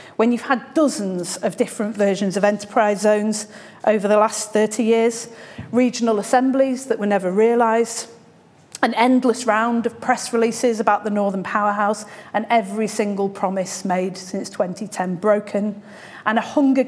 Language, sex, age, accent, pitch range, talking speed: English, female, 40-59, British, 195-240 Hz, 150 wpm